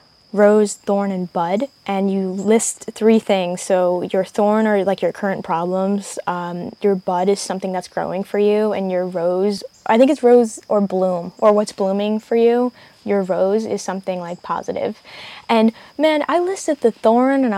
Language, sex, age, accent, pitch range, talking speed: English, female, 10-29, American, 185-220 Hz, 180 wpm